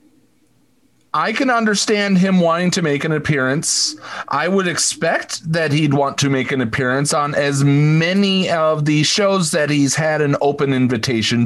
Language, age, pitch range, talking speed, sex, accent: English, 40-59, 145-205 Hz, 160 wpm, male, American